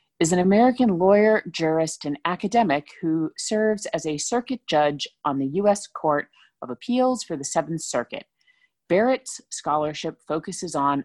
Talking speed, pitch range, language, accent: 145 wpm, 145-205 Hz, English, American